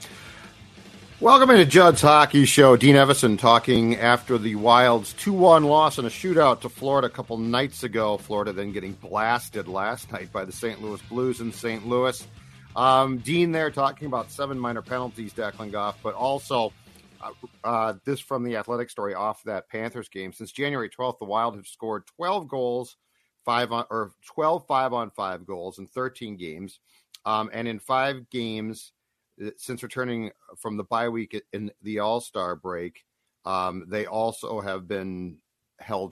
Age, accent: 50-69, American